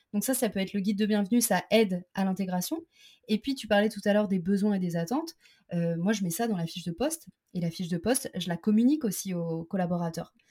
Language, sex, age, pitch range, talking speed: French, female, 20-39, 195-240 Hz, 265 wpm